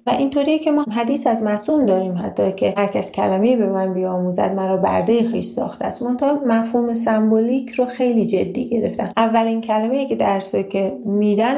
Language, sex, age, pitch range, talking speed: Persian, female, 30-49, 195-230 Hz, 180 wpm